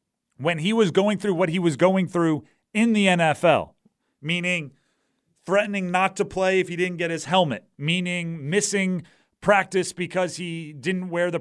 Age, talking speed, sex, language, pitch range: 40-59, 170 wpm, male, English, 150-185 Hz